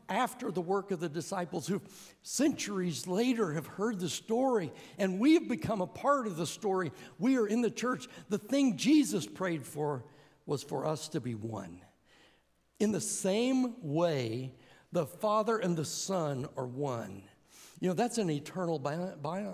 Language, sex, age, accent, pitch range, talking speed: English, male, 60-79, American, 155-220 Hz, 165 wpm